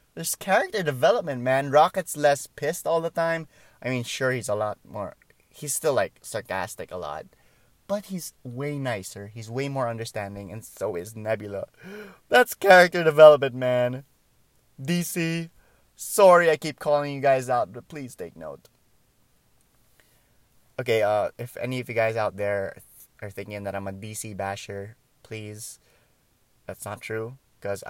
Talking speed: 155 wpm